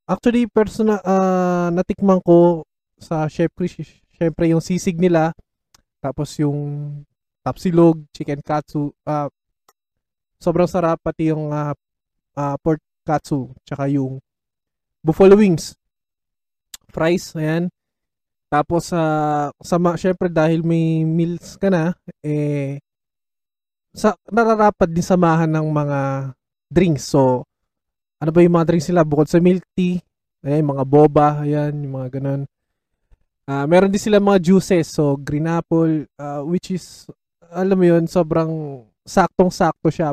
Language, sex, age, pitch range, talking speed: Filipino, male, 20-39, 145-175 Hz, 120 wpm